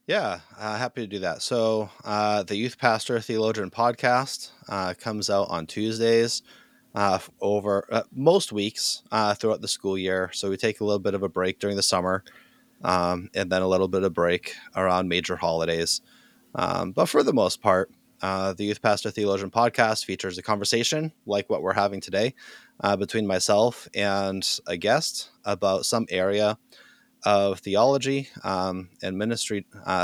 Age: 20-39